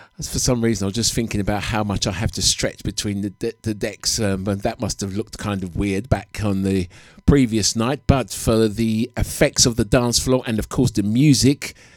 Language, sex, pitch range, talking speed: English, male, 105-130 Hz, 230 wpm